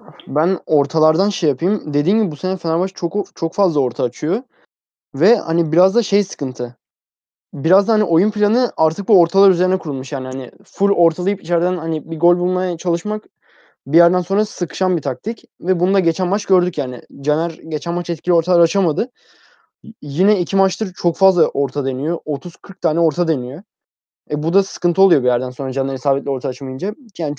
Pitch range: 145-190 Hz